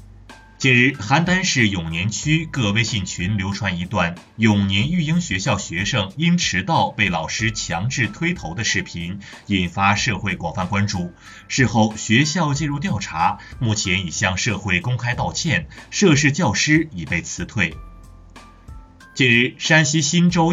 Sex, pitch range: male, 95-145 Hz